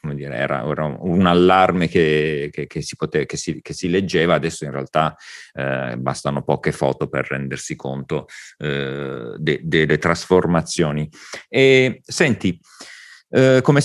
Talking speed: 150 wpm